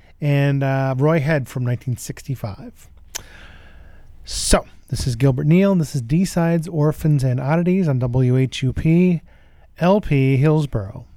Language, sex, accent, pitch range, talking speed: English, male, American, 90-140 Hz, 120 wpm